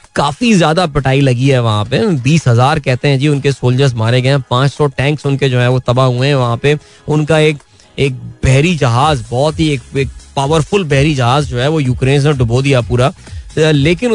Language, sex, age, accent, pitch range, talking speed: Hindi, male, 20-39, native, 125-160 Hz, 205 wpm